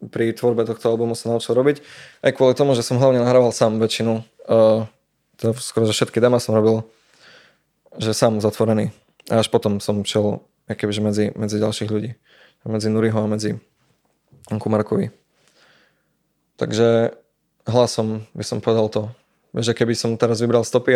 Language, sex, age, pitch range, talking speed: English, male, 20-39, 110-125 Hz, 145 wpm